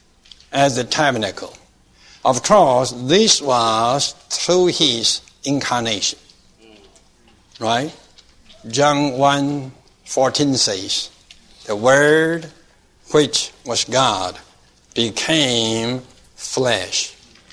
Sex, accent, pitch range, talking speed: male, American, 115-145 Hz, 75 wpm